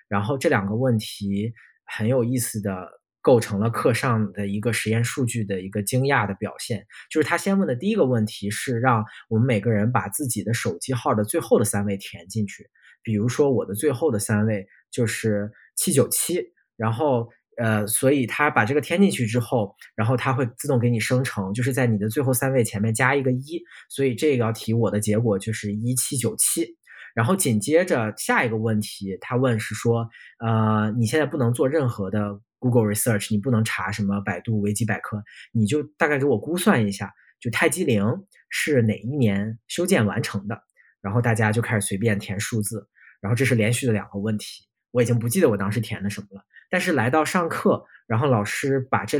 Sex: male